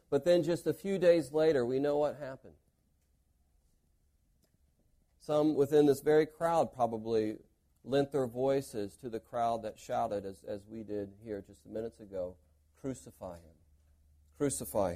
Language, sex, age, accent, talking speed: English, male, 40-59, American, 150 wpm